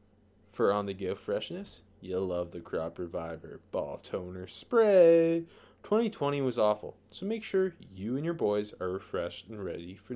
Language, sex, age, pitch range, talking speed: English, male, 20-39, 105-165 Hz, 155 wpm